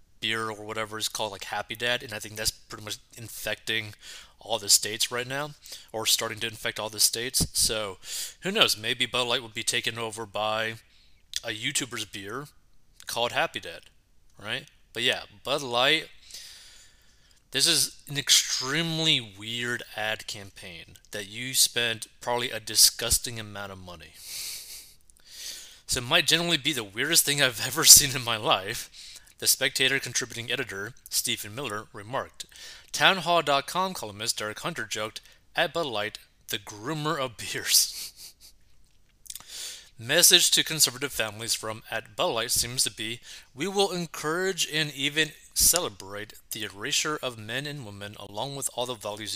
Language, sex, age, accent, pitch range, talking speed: English, male, 30-49, American, 105-135 Hz, 155 wpm